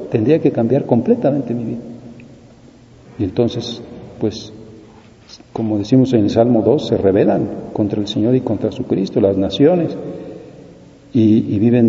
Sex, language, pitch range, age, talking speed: male, Spanish, 105-120 Hz, 50-69, 145 wpm